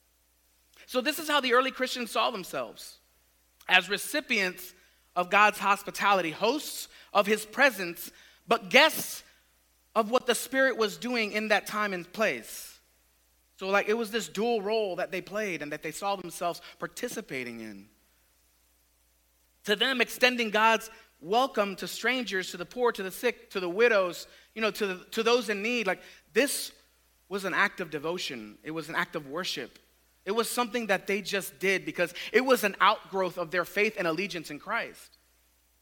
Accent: American